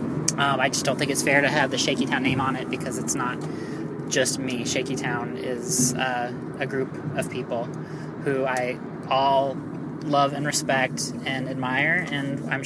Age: 30-49